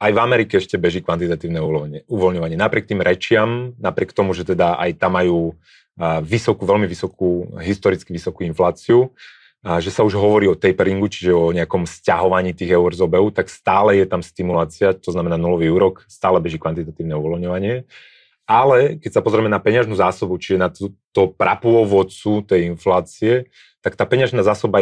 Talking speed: 160 wpm